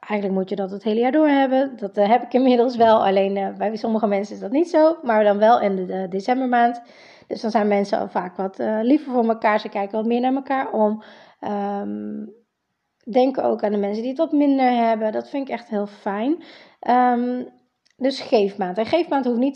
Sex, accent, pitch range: female, Dutch, 205-250 Hz